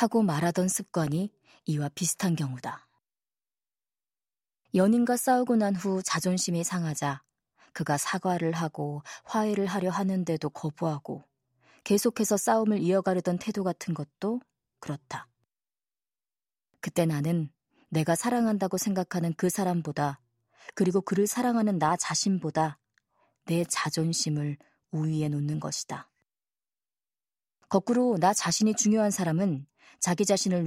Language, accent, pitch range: Korean, native, 155-195 Hz